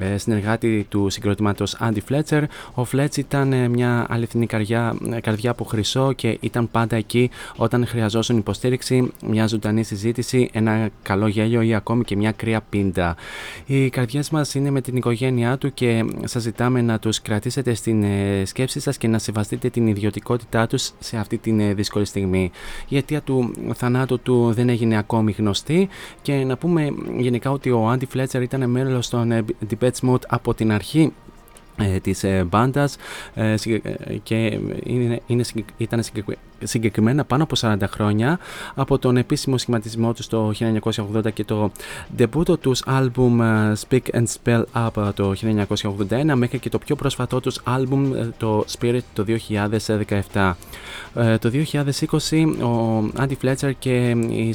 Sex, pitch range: male, 110-125 Hz